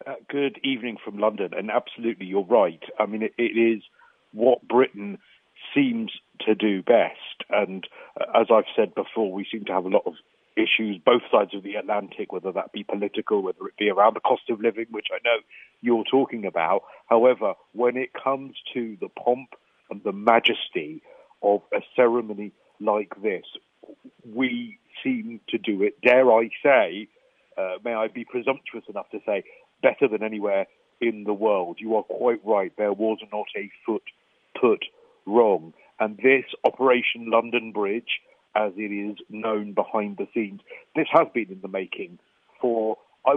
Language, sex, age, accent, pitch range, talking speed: English, male, 50-69, British, 105-145 Hz, 175 wpm